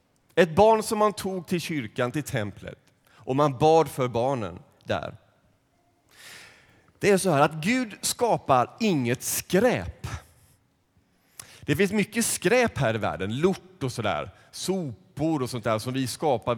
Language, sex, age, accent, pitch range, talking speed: Swedish, male, 30-49, native, 120-190 Hz, 150 wpm